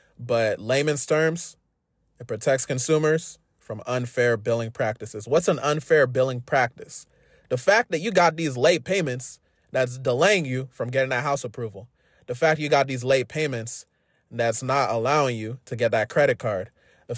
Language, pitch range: English, 120-155 Hz